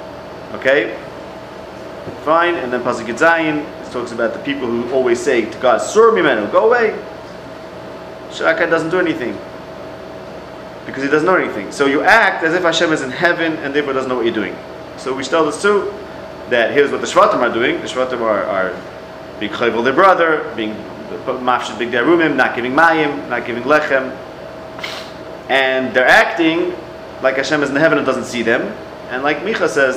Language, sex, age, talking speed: English, male, 30-49, 180 wpm